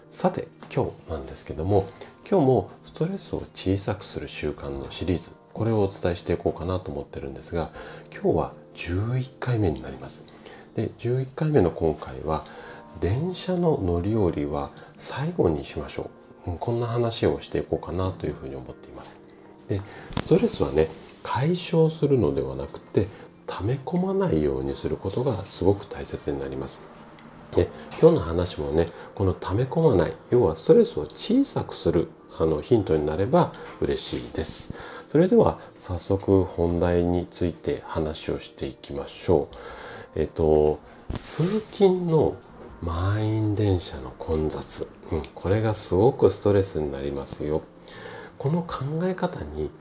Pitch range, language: 80-120 Hz, Japanese